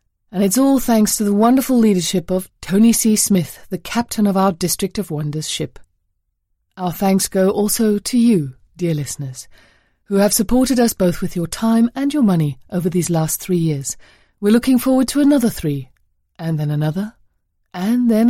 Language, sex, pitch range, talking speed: English, female, 160-235 Hz, 180 wpm